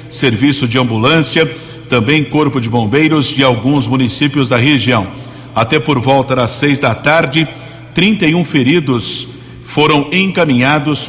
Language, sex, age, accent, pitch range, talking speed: Portuguese, male, 60-79, Brazilian, 130-150 Hz, 125 wpm